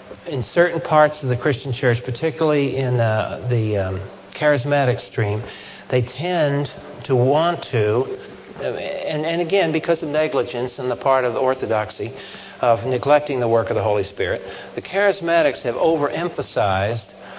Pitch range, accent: 120-145 Hz, American